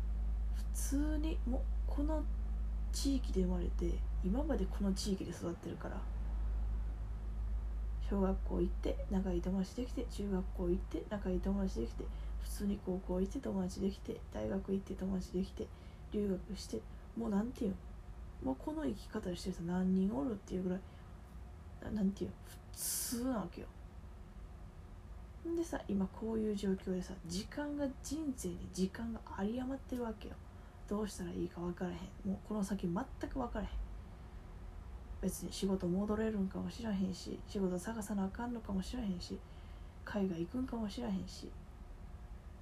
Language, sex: Japanese, female